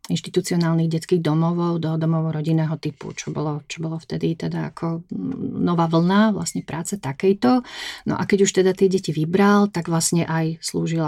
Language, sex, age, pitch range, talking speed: Slovak, female, 40-59, 160-185 Hz, 170 wpm